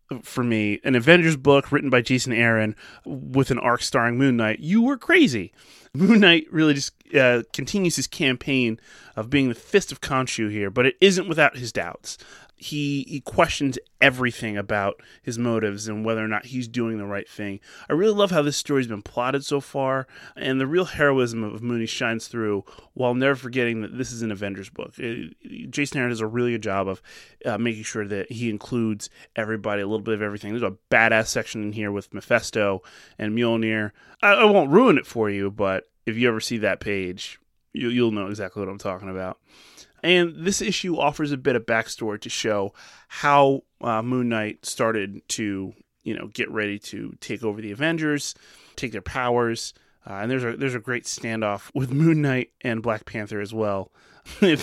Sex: male